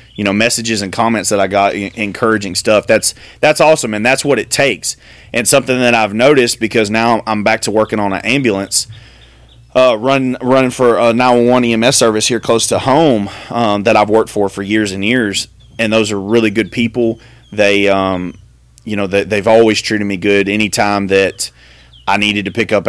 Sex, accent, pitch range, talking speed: male, American, 100-120 Hz, 200 wpm